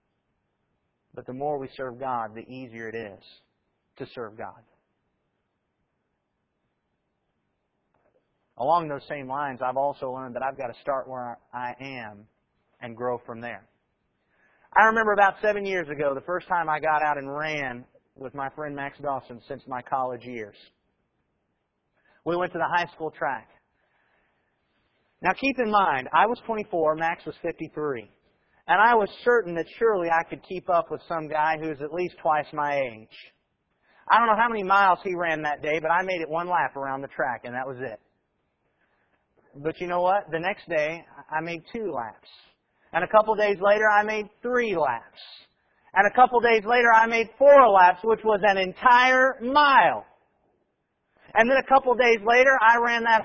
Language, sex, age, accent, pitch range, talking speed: English, male, 30-49, American, 135-215 Hz, 175 wpm